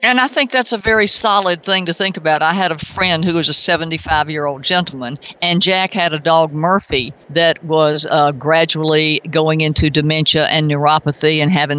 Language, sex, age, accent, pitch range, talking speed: English, female, 50-69, American, 160-210 Hz, 190 wpm